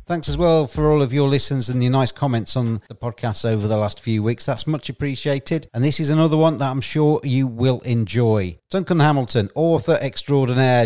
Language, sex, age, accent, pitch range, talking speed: English, male, 40-59, British, 115-145 Hz, 210 wpm